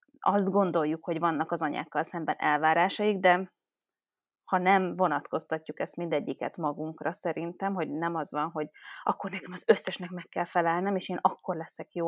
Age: 20-39